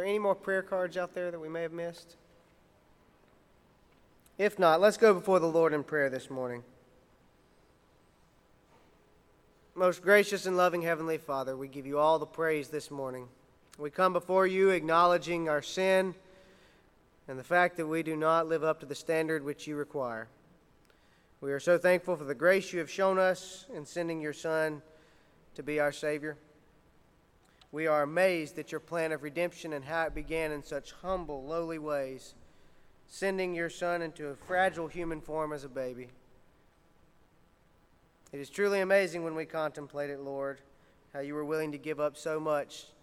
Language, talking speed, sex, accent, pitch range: English, 175 wpm, male, American, 150-175 Hz